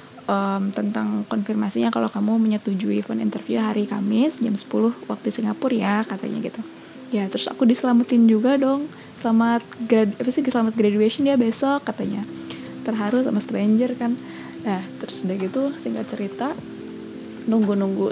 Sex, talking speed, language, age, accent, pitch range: female, 140 wpm, Indonesian, 20-39, native, 200-235 Hz